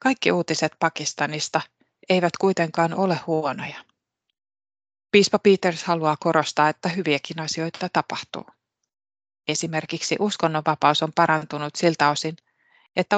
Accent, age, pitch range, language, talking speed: native, 30-49, 150-180 Hz, Finnish, 100 wpm